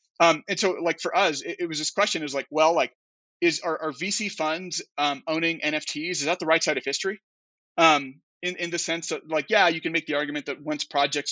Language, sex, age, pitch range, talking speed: English, male, 30-49, 135-165 Hz, 250 wpm